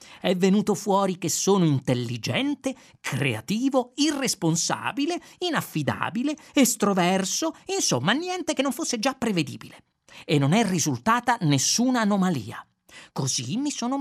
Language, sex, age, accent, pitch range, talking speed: Italian, male, 40-59, native, 165-270 Hz, 110 wpm